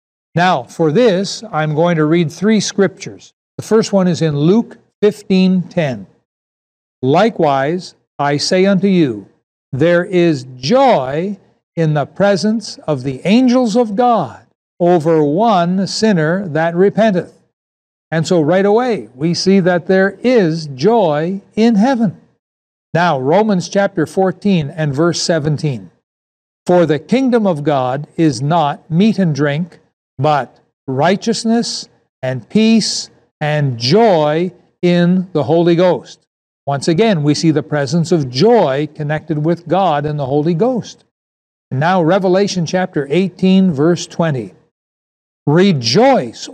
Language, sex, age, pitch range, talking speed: English, male, 60-79, 150-195 Hz, 125 wpm